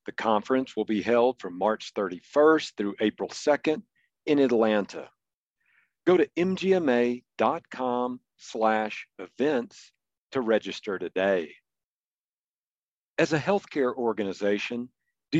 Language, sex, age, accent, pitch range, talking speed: English, male, 50-69, American, 115-145 Hz, 95 wpm